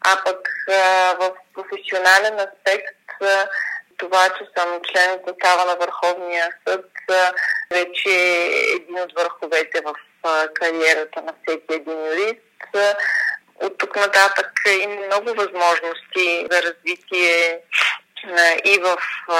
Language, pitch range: Bulgarian, 165-190 Hz